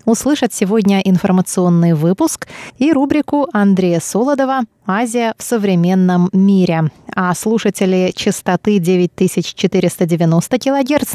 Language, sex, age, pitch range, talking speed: Russian, female, 20-39, 180-235 Hz, 90 wpm